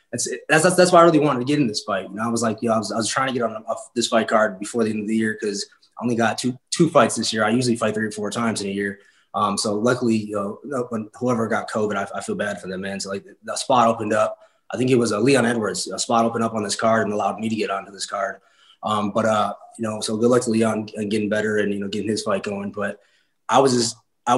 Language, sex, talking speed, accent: English, male, 310 wpm, American